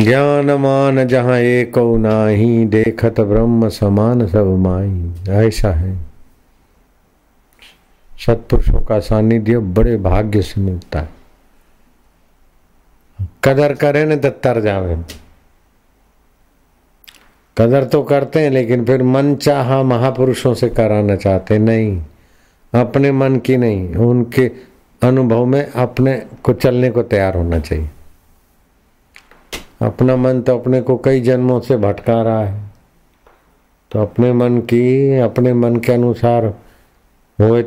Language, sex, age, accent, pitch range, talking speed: Hindi, male, 50-69, native, 95-125 Hz, 115 wpm